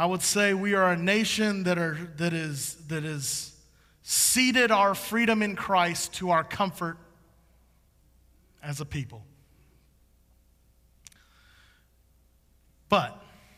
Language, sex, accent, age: English, male, American, 30-49